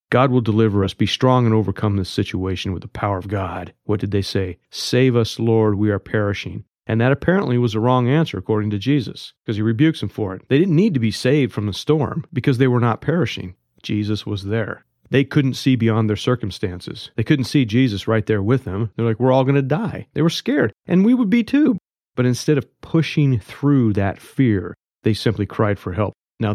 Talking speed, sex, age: 225 wpm, male, 40-59